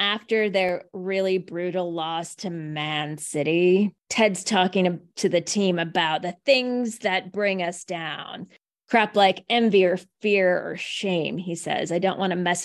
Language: English